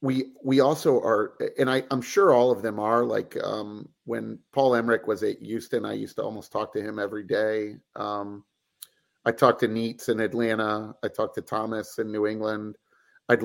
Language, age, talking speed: English, 40-59, 195 wpm